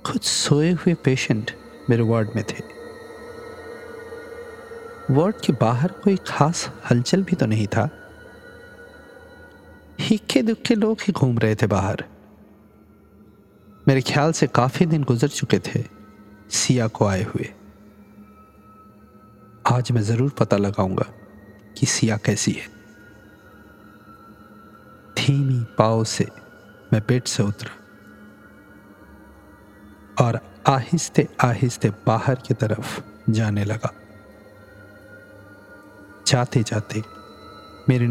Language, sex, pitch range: Hindi, male, 105-140 Hz